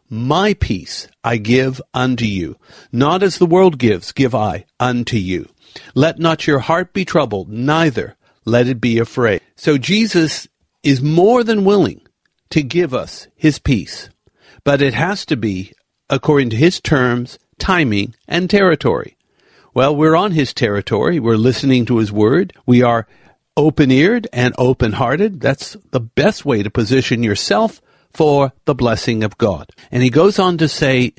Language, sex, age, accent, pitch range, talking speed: English, male, 60-79, American, 120-165 Hz, 160 wpm